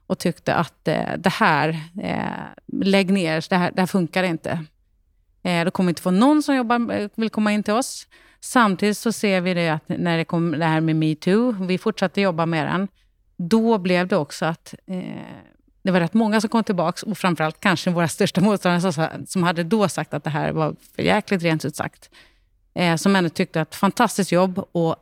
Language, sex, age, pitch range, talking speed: Swedish, female, 30-49, 165-195 Hz, 210 wpm